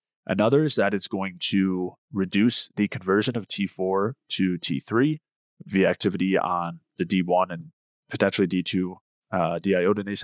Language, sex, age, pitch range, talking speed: English, male, 20-39, 90-105 Hz, 135 wpm